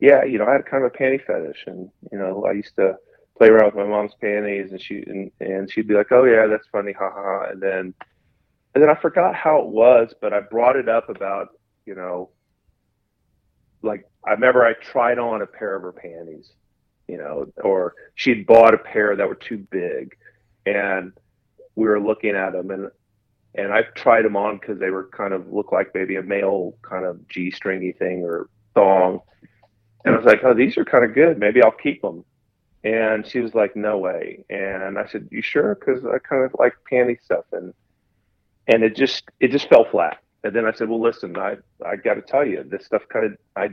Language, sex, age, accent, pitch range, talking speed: English, male, 30-49, American, 100-130 Hz, 220 wpm